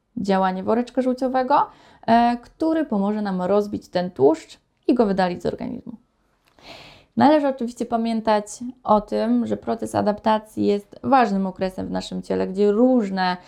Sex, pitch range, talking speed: female, 185-240 Hz, 135 wpm